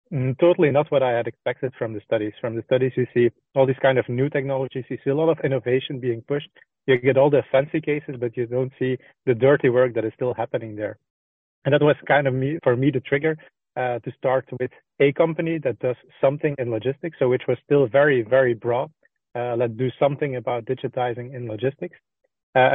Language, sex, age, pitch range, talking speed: English, male, 30-49, 125-145 Hz, 215 wpm